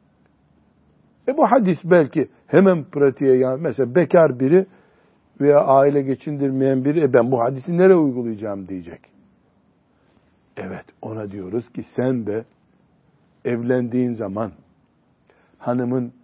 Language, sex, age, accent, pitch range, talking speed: Turkish, male, 60-79, native, 120-160 Hz, 110 wpm